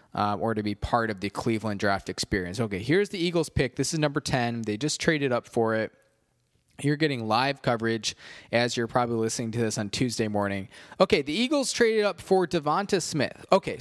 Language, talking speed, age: English, 205 wpm, 20-39